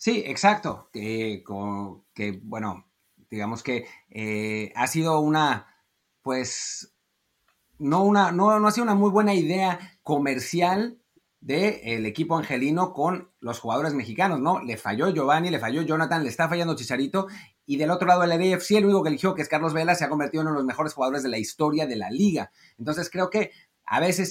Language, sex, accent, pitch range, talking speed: Spanish, male, Mexican, 125-180 Hz, 190 wpm